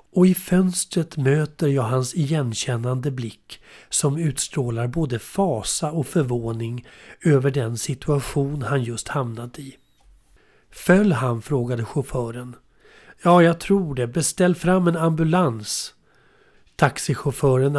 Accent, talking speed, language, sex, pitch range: native, 115 wpm, Swedish, male, 125-165 Hz